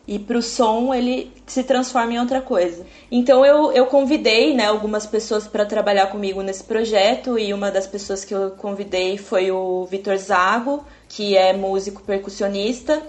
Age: 20-39